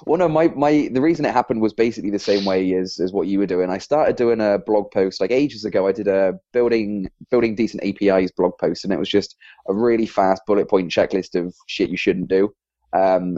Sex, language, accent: male, English, British